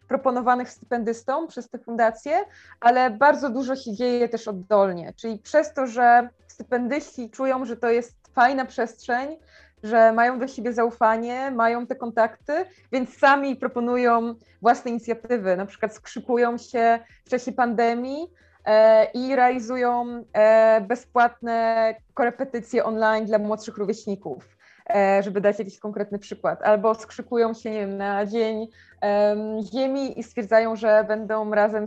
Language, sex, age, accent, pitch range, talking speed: Polish, female, 20-39, native, 215-245 Hz, 130 wpm